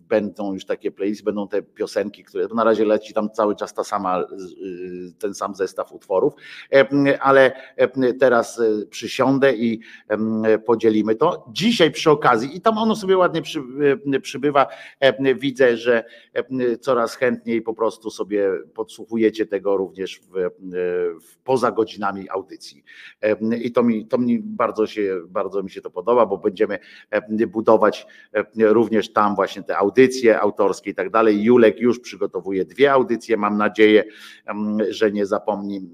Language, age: Polish, 50-69